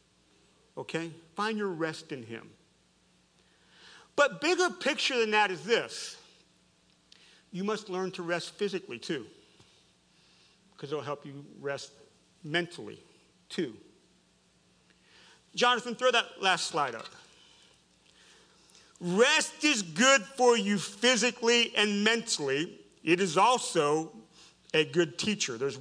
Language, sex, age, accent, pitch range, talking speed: English, male, 50-69, American, 140-210 Hz, 115 wpm